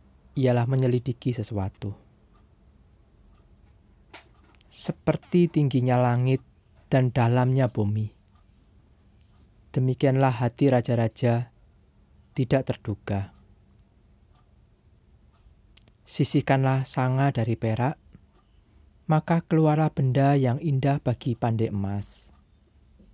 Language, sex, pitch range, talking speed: Indonesian, male, 95-135 Hz, 65 wpm